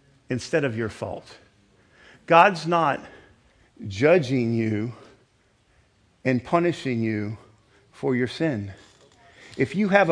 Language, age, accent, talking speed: English, 50-69, American, 100 wpm